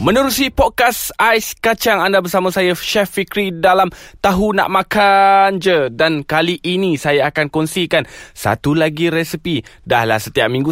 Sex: male